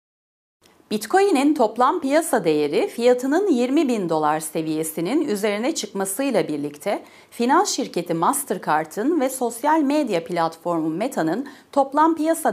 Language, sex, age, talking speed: Turkish, female, 40-59, 105 wpm